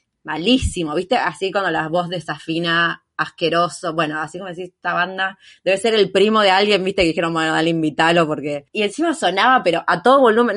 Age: 20-39